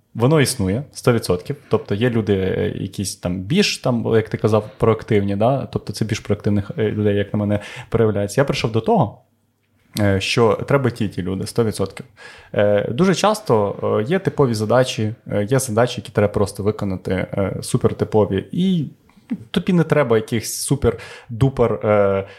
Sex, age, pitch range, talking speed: male, 20-39, 105-140 Hz, 135 wpm